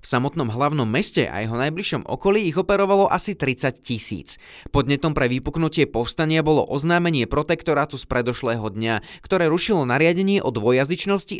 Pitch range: 125-175 Hz